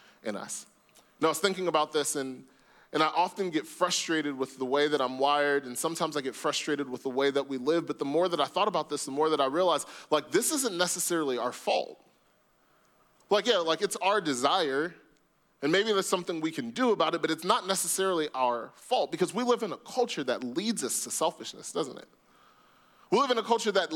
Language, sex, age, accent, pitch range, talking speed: English, male, 20-39, American, 150-210 Hz, 225 wpm